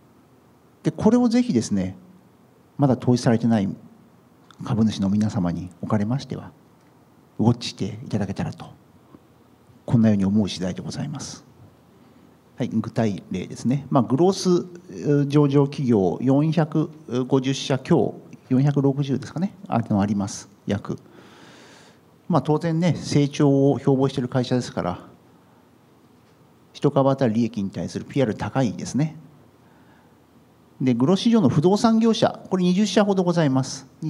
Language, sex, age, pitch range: Japanese, male, 50-69, 110-160 Hz